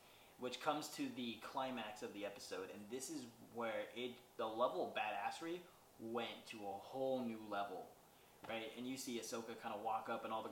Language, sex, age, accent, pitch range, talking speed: English, male, 20-39, American, 110-125 Hz, 200 wpm